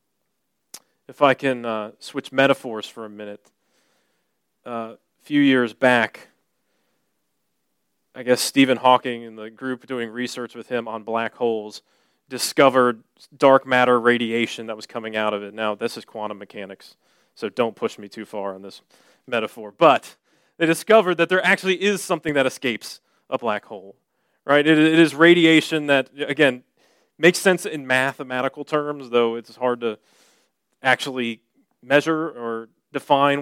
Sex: male